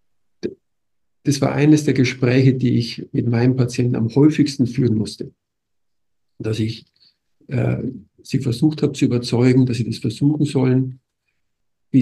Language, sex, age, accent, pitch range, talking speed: German, male, 50-69, German, 115-135 Hz, 140 wpm